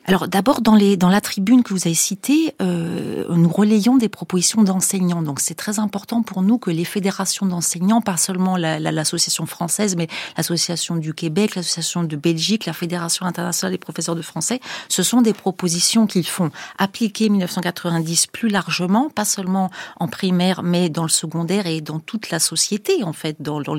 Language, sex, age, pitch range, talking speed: French, female, 40-59, 160-205 Hz, 180 wpm